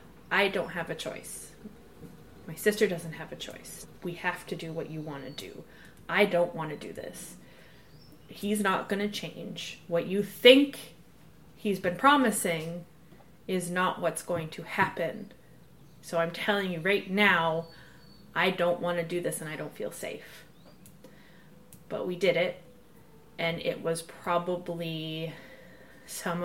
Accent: American